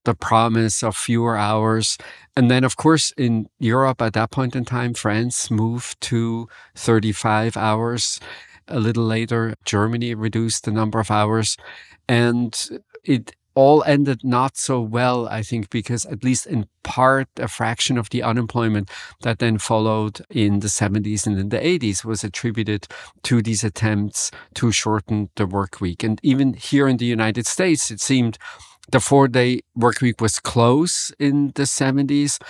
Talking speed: 160 wpm